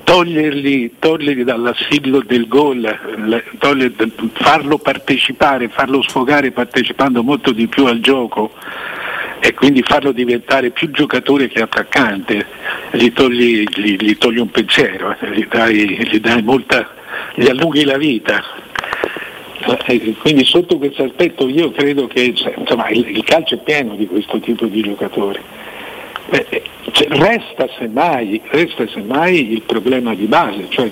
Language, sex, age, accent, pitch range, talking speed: Italian, male, 60-79, native, 115-145 Hz, 120 wpm